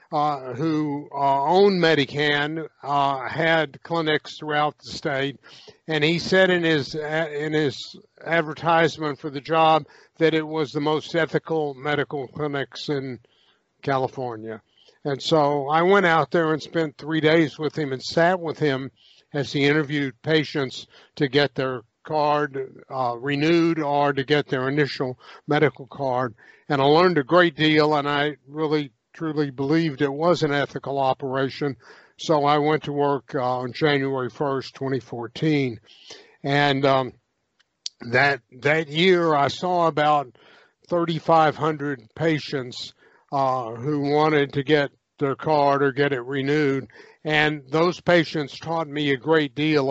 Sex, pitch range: male, 135-155 Hz